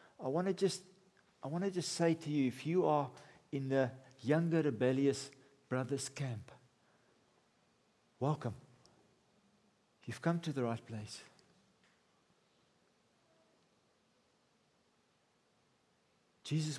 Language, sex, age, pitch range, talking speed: English, male, 50-69, 120-145 Hz, 95 wpm